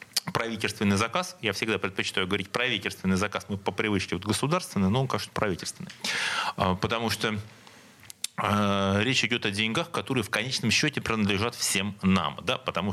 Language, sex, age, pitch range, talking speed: Russian, male, 30-49, 100-135 Hz, 140 wpm